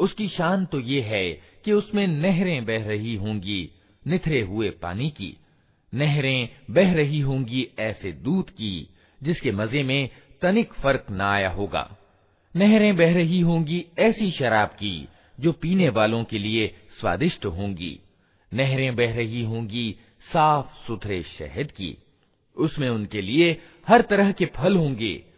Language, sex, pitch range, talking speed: Hindi, male, 105-170 Hz, 140 wpm